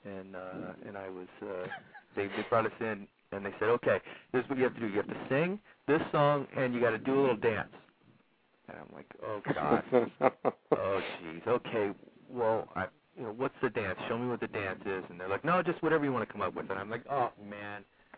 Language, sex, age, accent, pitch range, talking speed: English, male, 30-49, American, 100-140 Hz, 245 wpm